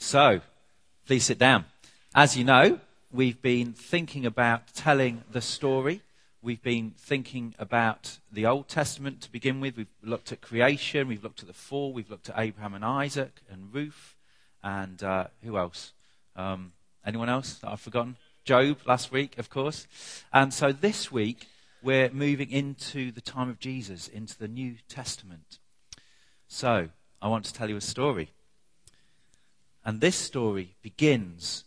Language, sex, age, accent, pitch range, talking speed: English, male, 40-59, British, 110-140 Hz, 155 wpm